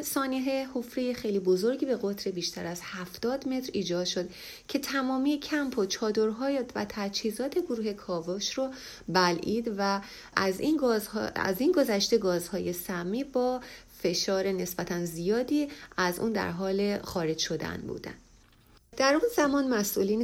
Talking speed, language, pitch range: 140 wpm, Persian, 180-245 Hz